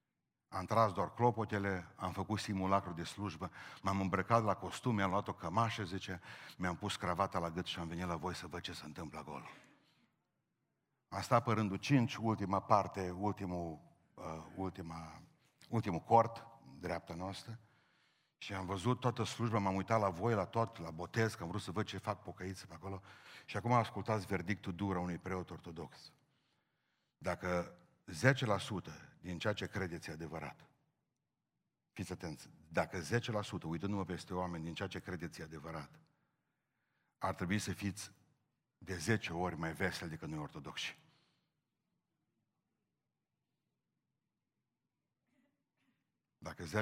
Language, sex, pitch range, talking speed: Romanian, male, 85-105 Hz, 145 wpm